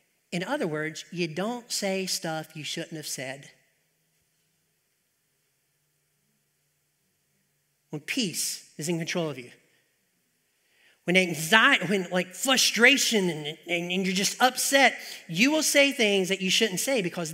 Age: 40-59